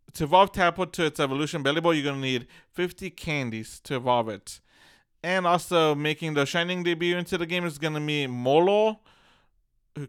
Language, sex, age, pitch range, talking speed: English, male, 20-39, 125-170 Hz, 190 wpm